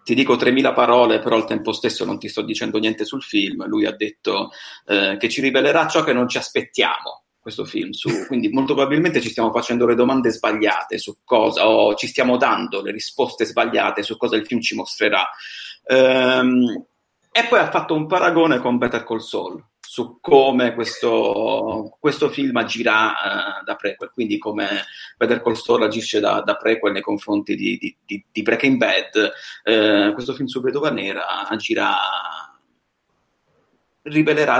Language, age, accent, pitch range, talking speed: Italian, 30-49, native, 115-145 Hz, 170 wpm